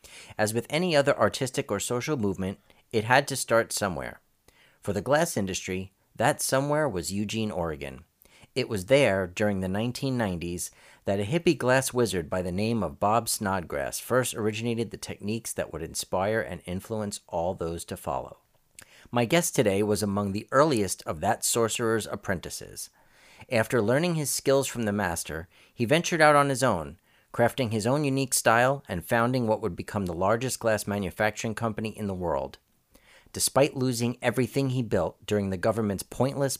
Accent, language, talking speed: American, English, 170 wpm